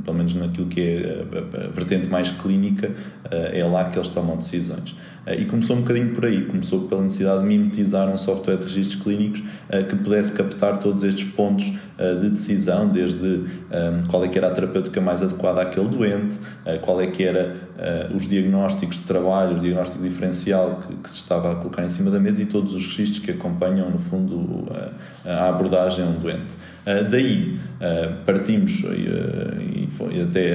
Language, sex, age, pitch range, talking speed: Portuguese, male, 20-39, 90-110 Hz, 195 wpm